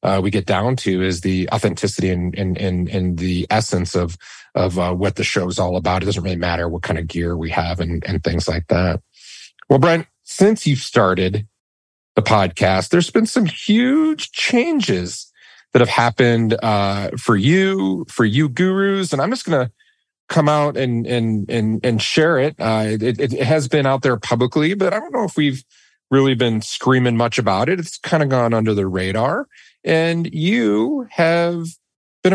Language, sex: English, male